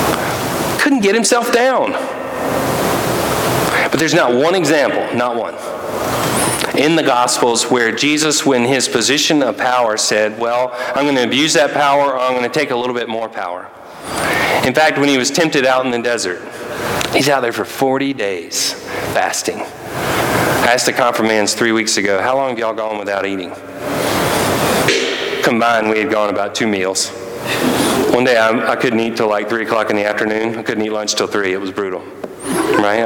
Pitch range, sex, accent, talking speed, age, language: 115-170 Hz, male, American, 175 wpm, 40-59, English